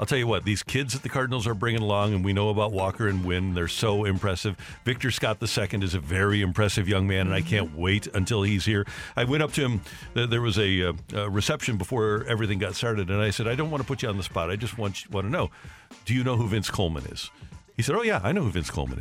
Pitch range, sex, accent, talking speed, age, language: 95-115 Hz, male, American, 270 wpm, 50-69, English